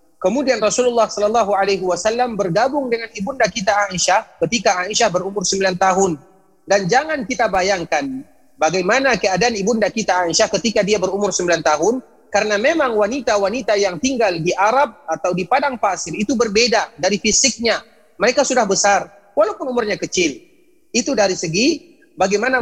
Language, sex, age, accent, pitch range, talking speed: Indonesian, male, 30-49, native, 180-245 Hz, 145 wpm